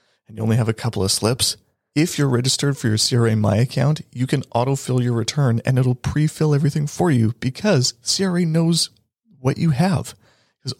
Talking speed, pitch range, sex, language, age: 190 wpm, 110-135 Hz, male, English, 30-49